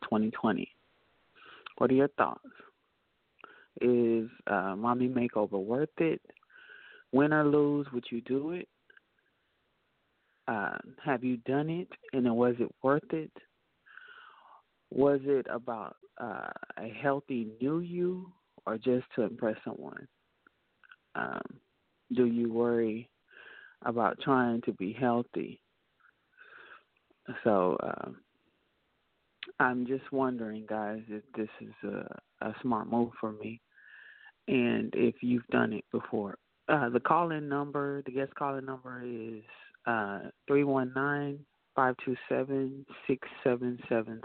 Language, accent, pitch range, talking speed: English, American, 115-145 Hz, 125 wpm